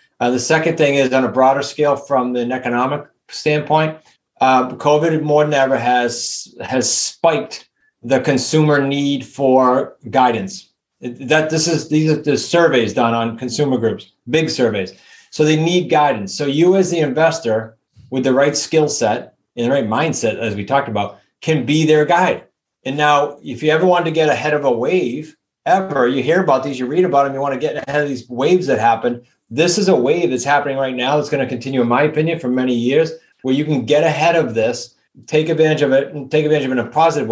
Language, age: English, 30-49